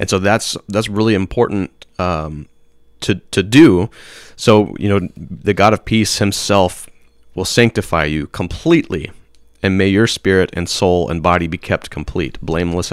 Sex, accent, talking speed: male, American, 160 wpm